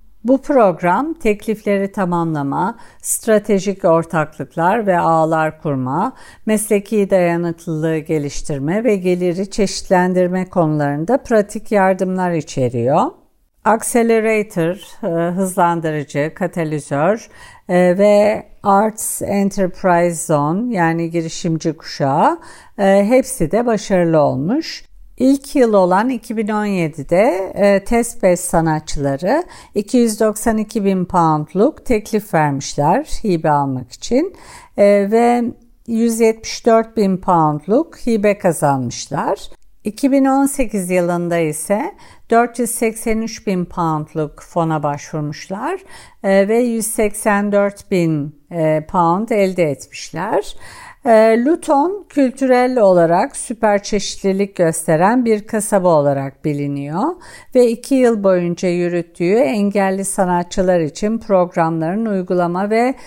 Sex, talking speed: female, 85 wpm